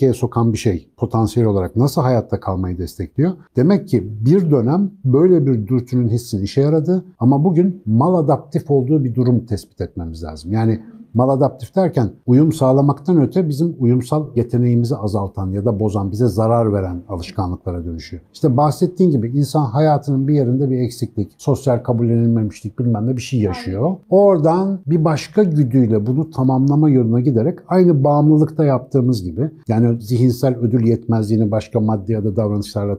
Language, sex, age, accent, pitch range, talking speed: Turkish, male, 60-79, native, 110-145 Hz, 155 wpm